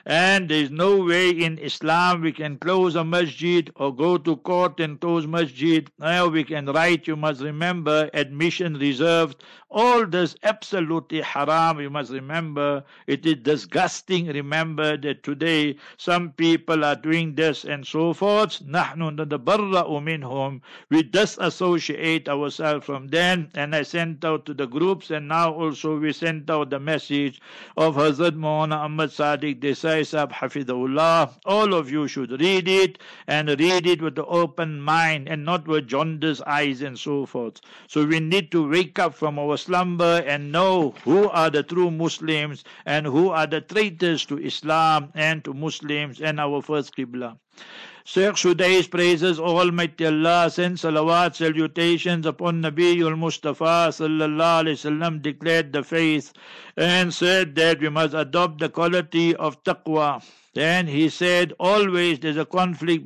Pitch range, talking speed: 150-175 Hz, 150 wpm